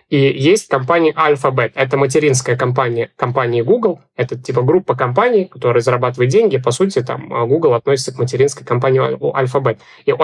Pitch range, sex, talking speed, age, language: 130-150 Hz, male, 160 wpm, 20-39, Russian